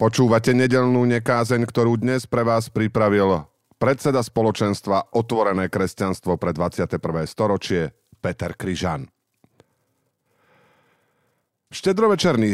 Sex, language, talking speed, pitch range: male, Slovak, 85 wpm, 90-120 Hz